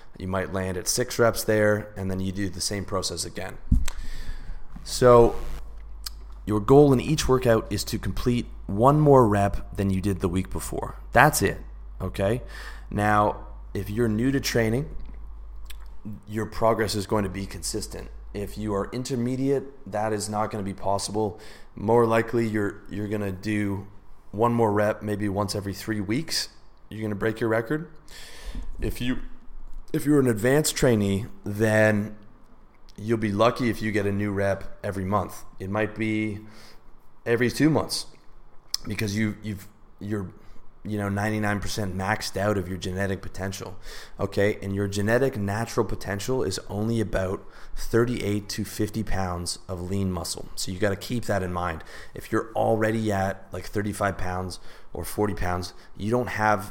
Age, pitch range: 20-39, 95-110 Hz